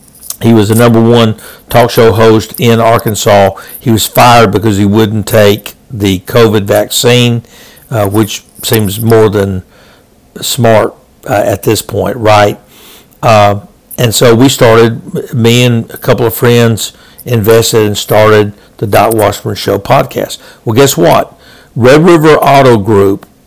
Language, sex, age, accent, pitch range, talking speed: English, male, 60-79, American, 105-115 Hz, 145 wpm